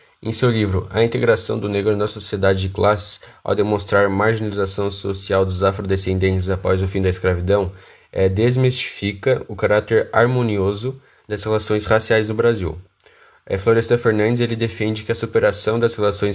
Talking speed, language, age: 160 wpm, Portuguese, 10-29